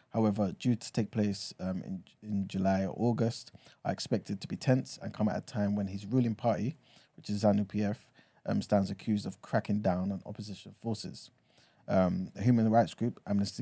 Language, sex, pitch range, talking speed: English, male, 95-110 Hz, 190 wpm